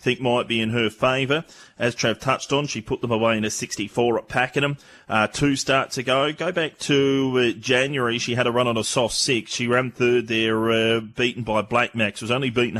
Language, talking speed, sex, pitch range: English, 225 wpm, male, 110-125 Hz